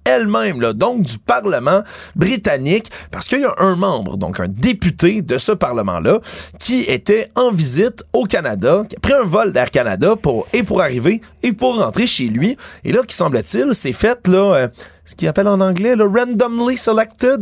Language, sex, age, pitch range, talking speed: French, male, 30-49, 155-210 Hz, 195 wpm